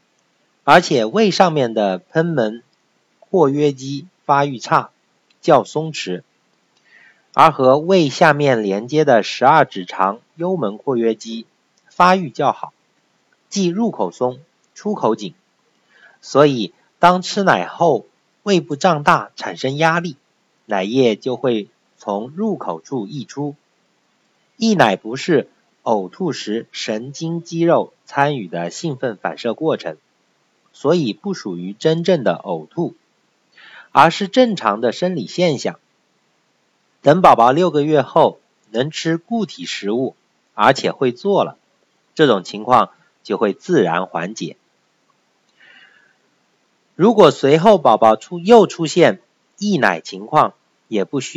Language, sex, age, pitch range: Chinese, male, 50-69, 115-180 Hz